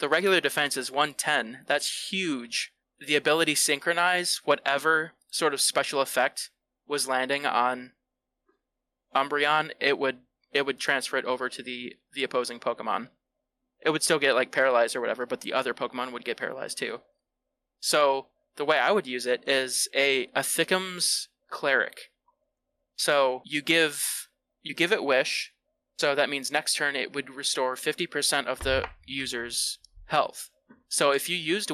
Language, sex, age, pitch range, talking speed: English, male, 20-39, 130-165 Hz, 160 wpm